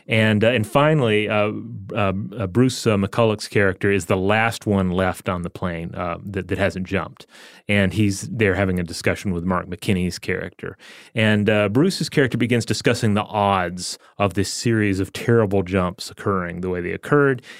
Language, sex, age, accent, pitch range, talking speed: English, male, 30-49, American, 95-115 Hz, 175 wpm